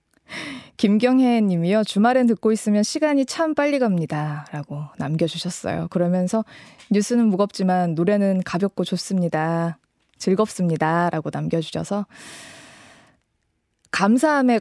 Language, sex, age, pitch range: Korean, female, 20-39, 165-230 Hz